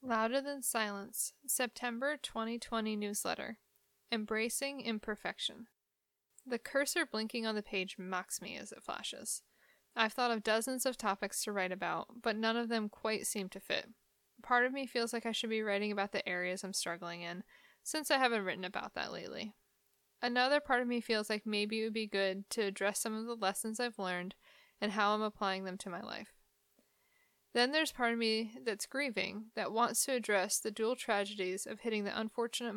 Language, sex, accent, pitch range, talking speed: English, female, American, 205-240 Hz, 190 wpm